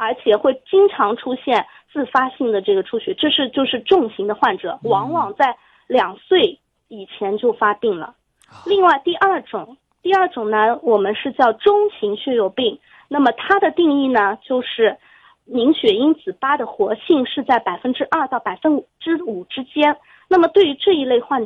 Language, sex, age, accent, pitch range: Chinese, female, 20-39, native, 230-345 Hz